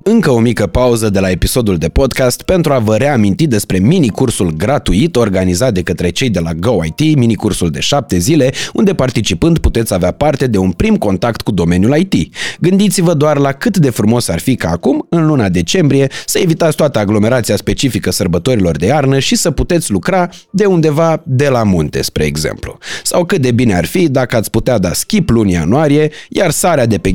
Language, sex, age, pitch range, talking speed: Romanian, male, 30-49, 105-165 Hz, 195 wpm